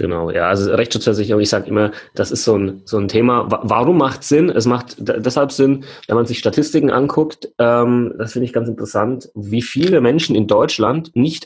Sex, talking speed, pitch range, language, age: male, 200 wpm, 95-120 Hz, German, 30-49